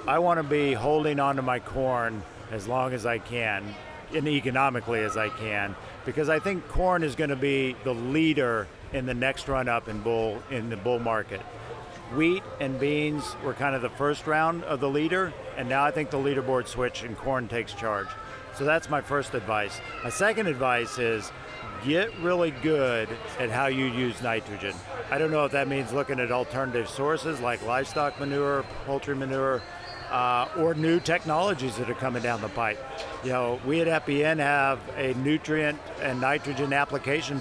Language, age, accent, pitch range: English, 50-69, American, 120-150 Hz